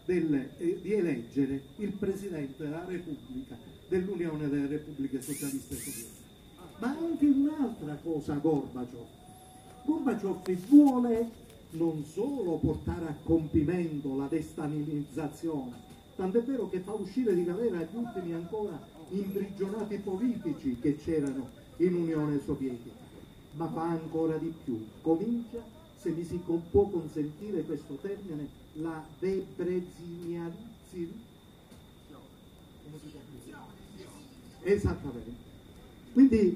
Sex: male